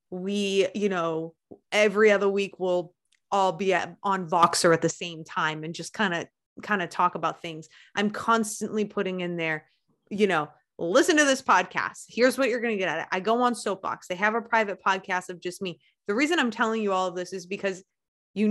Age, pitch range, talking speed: 20-39, 170-215 Hz, 215 wpm